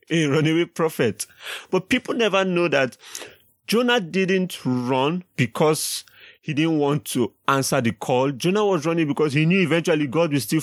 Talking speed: 165 wpm